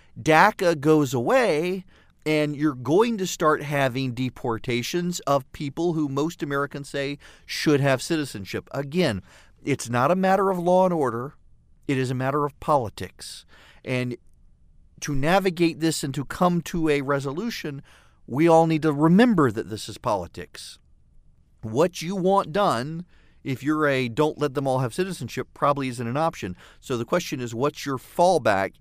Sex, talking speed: male, 160 wpm